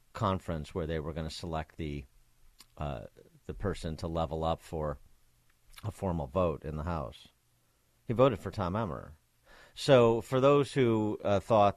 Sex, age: male, 50-69